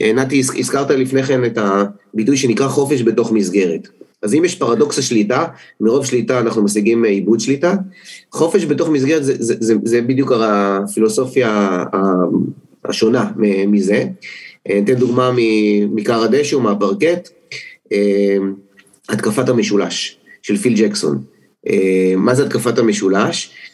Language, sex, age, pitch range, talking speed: Hebrew, male, 30-49, 105-140 Hz, 115 wpm